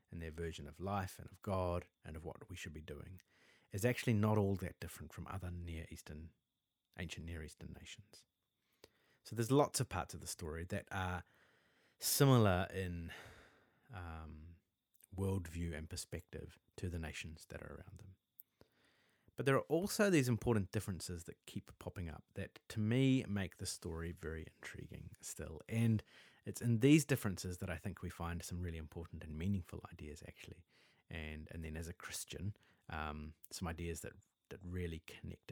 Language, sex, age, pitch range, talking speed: English, male, 30-49, 85-105 Hz, 170 wpm